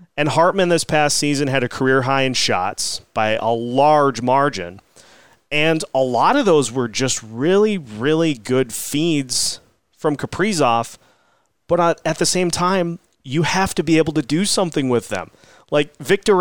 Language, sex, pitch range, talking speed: English, male, 120-160 Hz, 165 wpm